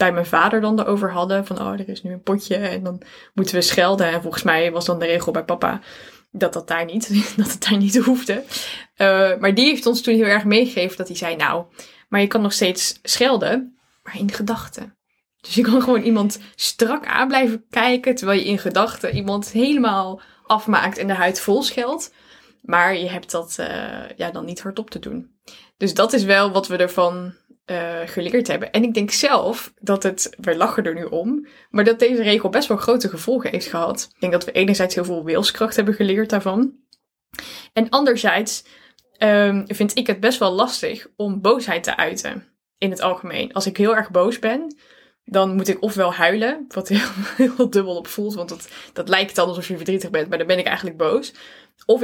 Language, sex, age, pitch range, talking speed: Dutch, female, 10-29, 180-230 Hz, 210 wpm